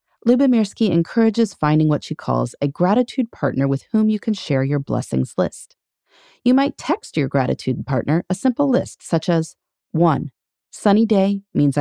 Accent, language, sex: American, English, female